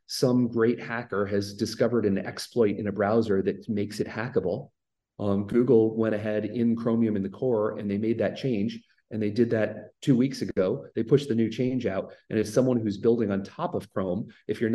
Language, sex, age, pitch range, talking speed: English, male, 30-49, 100-120 Hz, 210 wpm